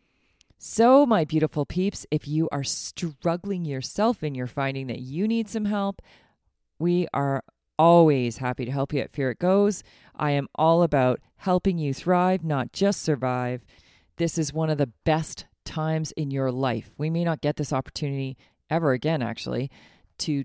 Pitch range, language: 135-200 Hz, English